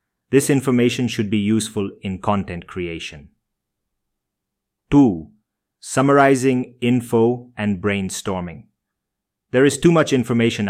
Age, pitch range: 30-49, 100-120 Hz